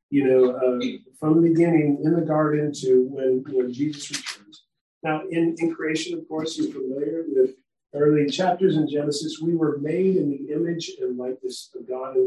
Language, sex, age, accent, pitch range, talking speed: English, male, 50-69, American, 145-215 Hz, 190 wpm